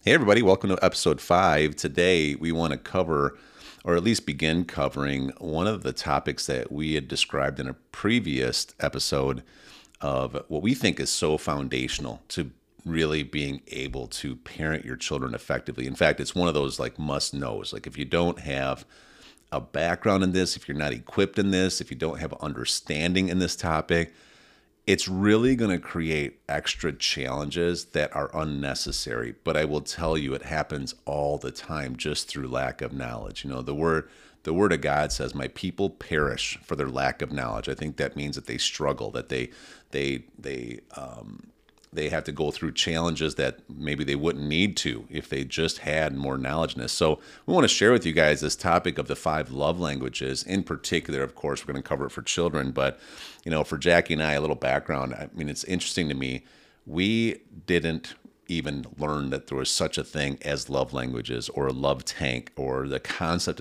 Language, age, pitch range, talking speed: English, 40-59, 70-85 Hz, 200 wpm